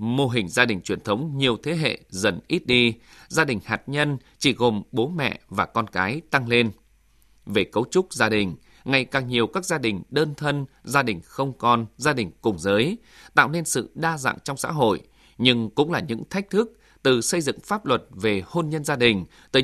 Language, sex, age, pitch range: Vietnamese, male, 20-39, 110-145 Hz